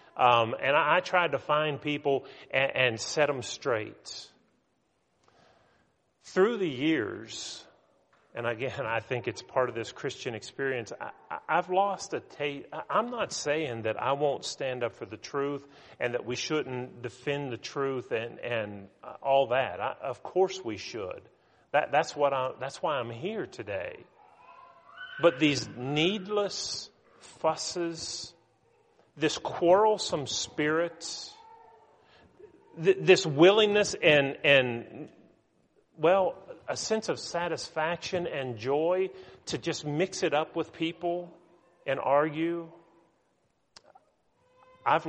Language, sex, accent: English, male, American